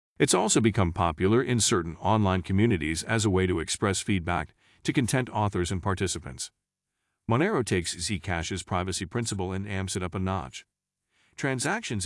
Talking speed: 155 wpm